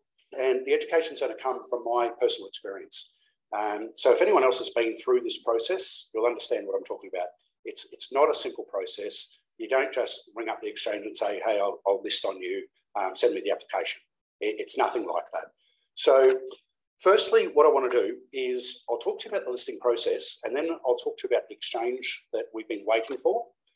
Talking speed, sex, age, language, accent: 220 wpm, male, 50-69, English, Australian